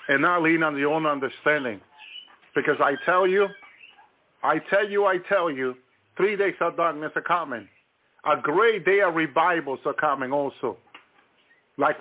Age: 50-69